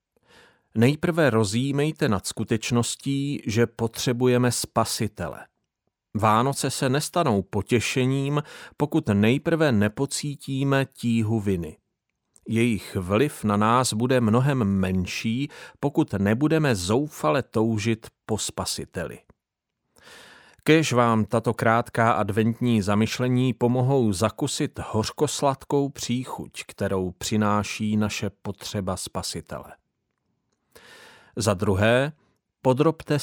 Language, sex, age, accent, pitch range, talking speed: Czech, male, 40-59, native, 105-130 Hz, 85 wpm